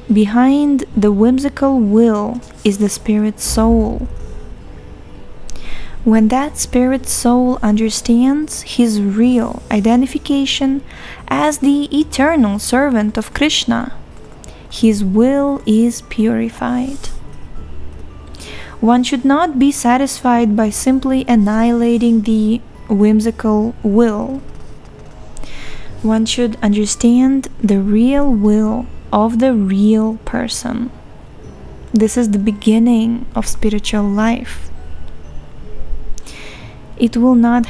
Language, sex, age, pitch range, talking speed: English, female, 20-39, 215-250 Hz, 90 wpm